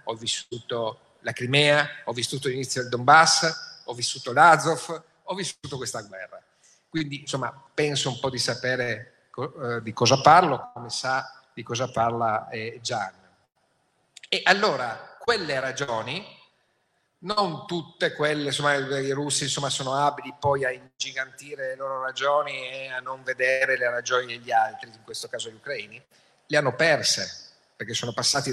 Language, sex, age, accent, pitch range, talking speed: Italian, male, 50-69, native, 120-145 Hz, 150 wpm